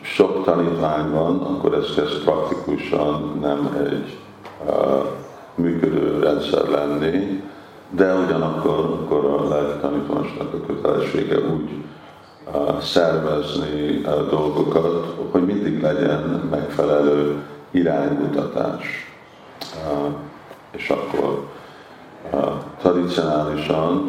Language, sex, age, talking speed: Hungarian, male, 50-69, 70 wpm